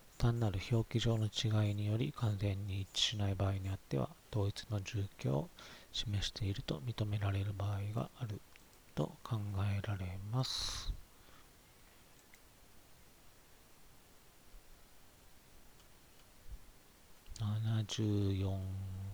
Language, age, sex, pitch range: Japanese, 40-59, male, 100-115 Hz